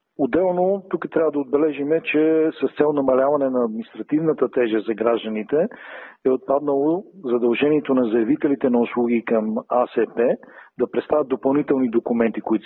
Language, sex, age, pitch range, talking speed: Bulgarian, male, 40-59, 120-145 Hz, 135 wpm